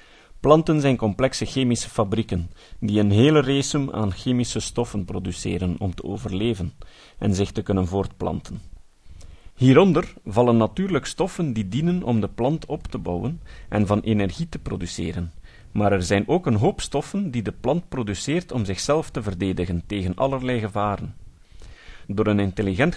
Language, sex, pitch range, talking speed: Dutch, male, 95-135 Hz, 155 wpm